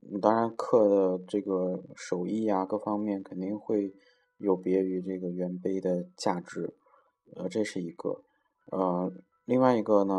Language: Chinese